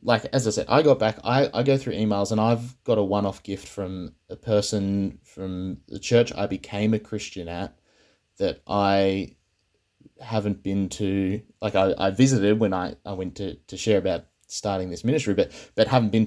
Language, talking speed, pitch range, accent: English, 195 wpm, 95-110 Hz, Australian